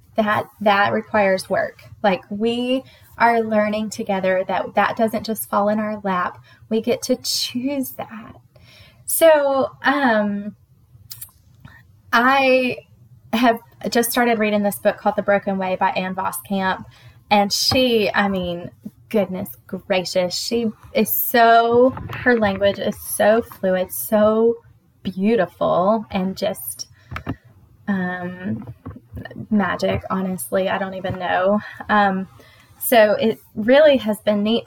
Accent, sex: American, female